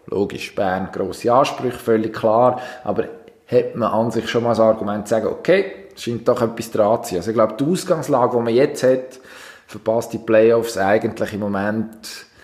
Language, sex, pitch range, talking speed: German, male, 105-125 Hz, 195 wpm